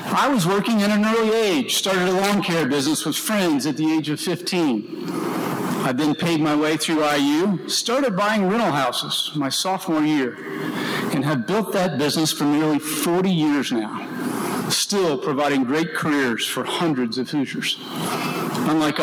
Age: 50-69